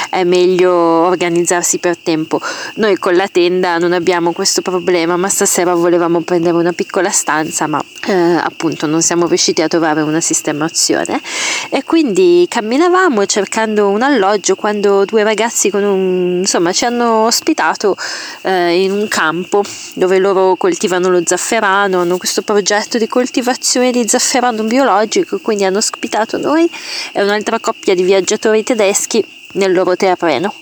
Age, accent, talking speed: 20-39, native, 140 wpm